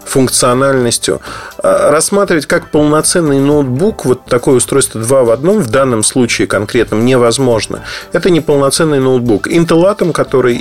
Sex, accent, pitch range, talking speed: male, native, 115-150 Hz, 130 wpm